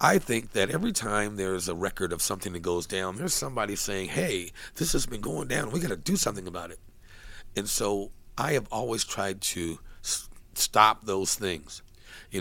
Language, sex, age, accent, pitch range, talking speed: English, male, 50-69, American, 90-105 Hz, 205 wpm